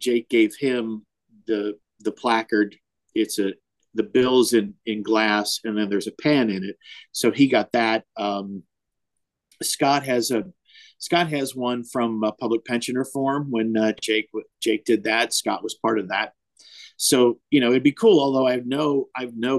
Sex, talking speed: male, 185 wpm